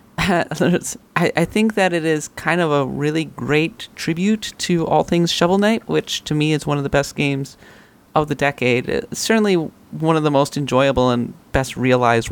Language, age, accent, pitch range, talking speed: English, 30-49, American, 130-160 Hz, 175 wpm